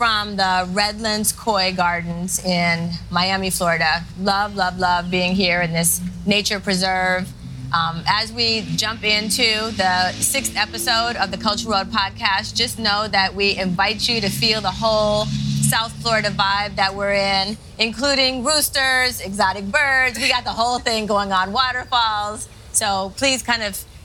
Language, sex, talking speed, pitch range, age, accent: English, female, 155 wpm, 175-215 Hz, 30-49, American